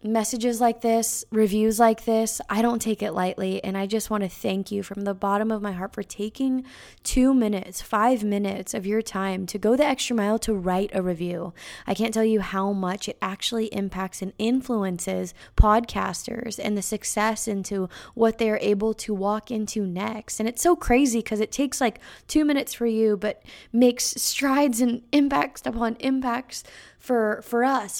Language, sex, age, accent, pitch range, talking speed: English, female, 20-39, American, 200-240 Hz, 185 wpm